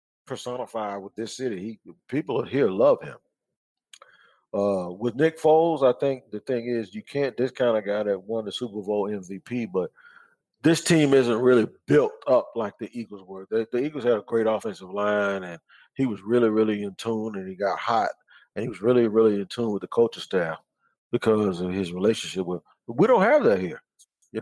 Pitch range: 105-130 Hz